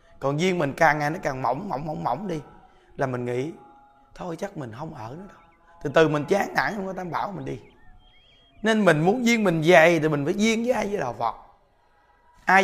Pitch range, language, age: 150-200 Hz, Vietnamese, 20-39